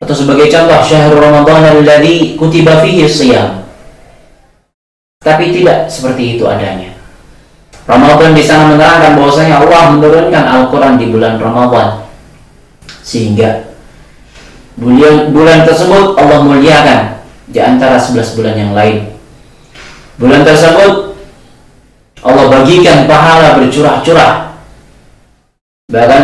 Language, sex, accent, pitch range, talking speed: Indonesian, male, native, 120-160 Hz, 100 wpm